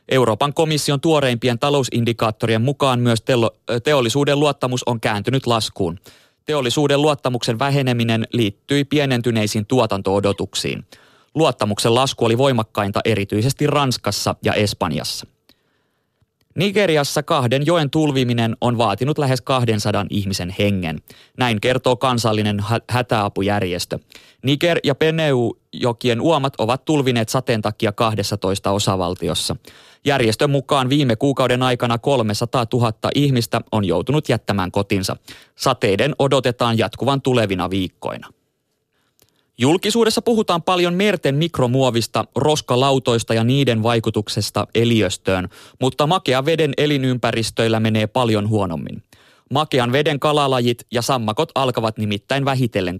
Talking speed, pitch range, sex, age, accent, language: 105 wpm, 110-140 Hz, male, 20-39, native, Finnish